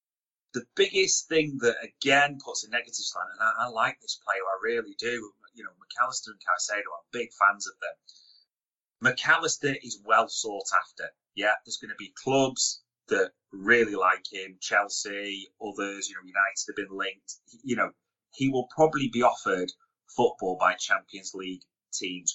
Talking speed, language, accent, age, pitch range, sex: 170 wpm, English, British, 30-49, 100-140 Hz, male